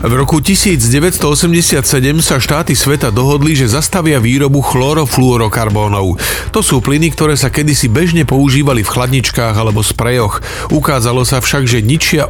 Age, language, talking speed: 40-59, Slovak, 135 wpm